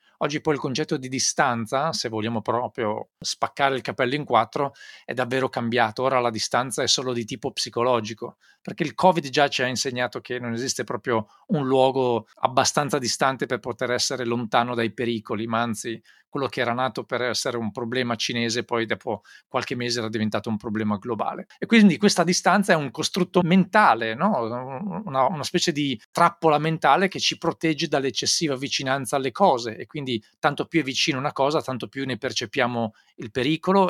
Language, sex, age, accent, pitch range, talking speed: Italian, male, 40-59, native, 120-165 Hz, 180 wpm